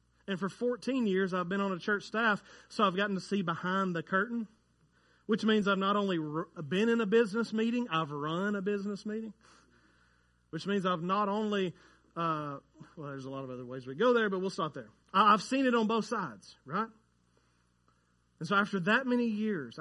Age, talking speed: 30-49, 200 wpm